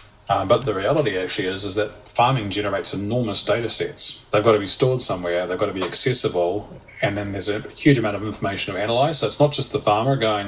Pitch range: 95-115 Hz